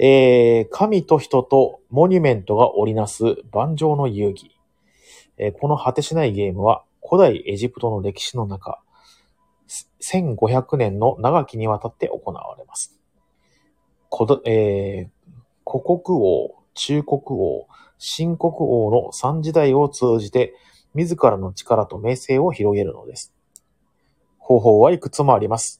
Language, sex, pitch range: Japanese, male, 105-155 Hz